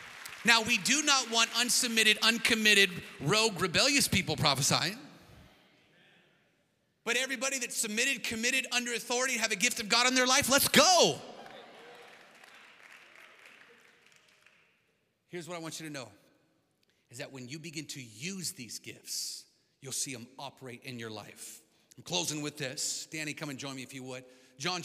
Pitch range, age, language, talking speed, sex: 155-195 Hz, 30-49, English, 155 wpm, male